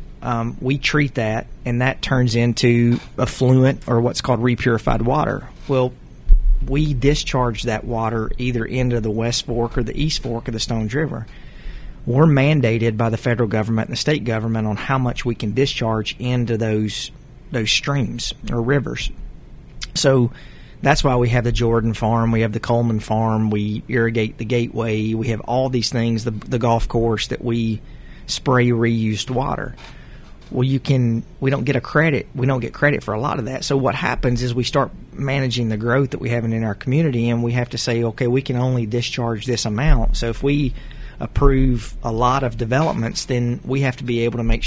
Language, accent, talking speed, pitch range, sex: English, American, 195 wpm, 115-135 Hz, male